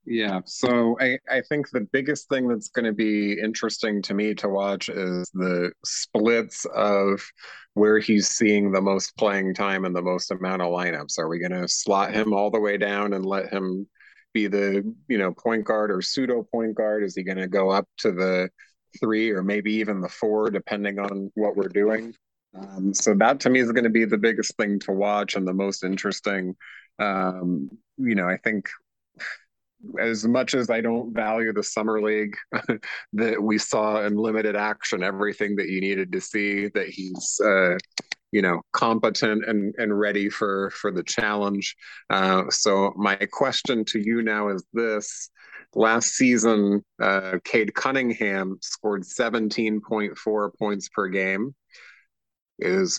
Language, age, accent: English, 30-49, American